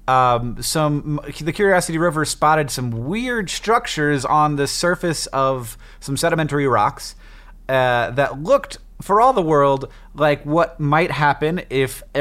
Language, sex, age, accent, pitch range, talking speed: English, male, 30-49, American, 115-150 Hz, 140 wpm